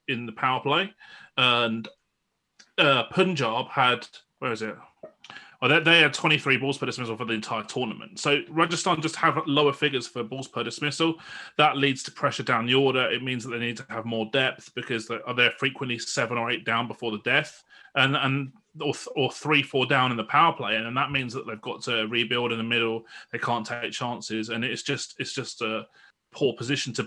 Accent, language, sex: British, English, male